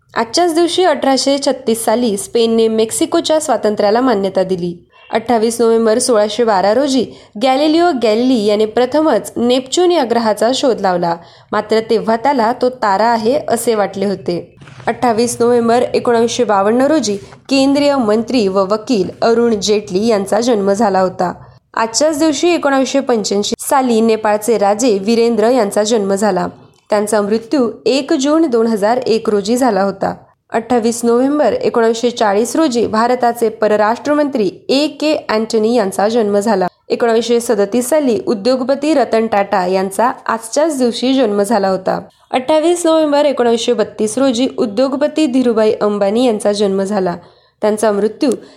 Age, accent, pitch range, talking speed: 20-39, native, 210-265 Hz, 125 wpm